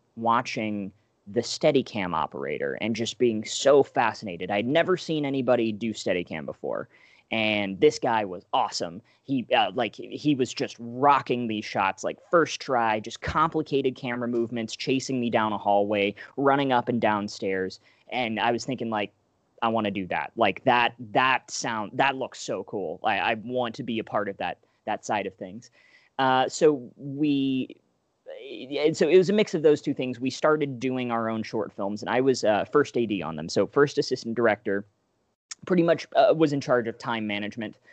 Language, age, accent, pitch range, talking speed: English, 20-39, American, 110-135 Hz, 185 wpm